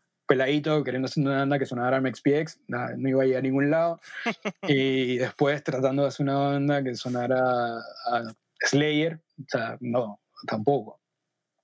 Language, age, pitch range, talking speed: Spanish, 20-39, 130-145 Hz, 160 wpm